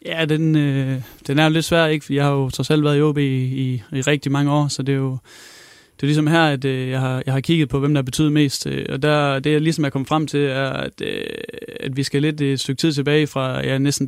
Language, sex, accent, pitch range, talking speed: Danish, male, native, 130-145 Hz, 285 wpm